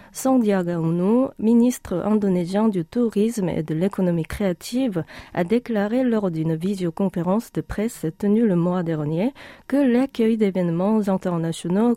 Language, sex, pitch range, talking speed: French, female, 170-220 Hz, 125 wpm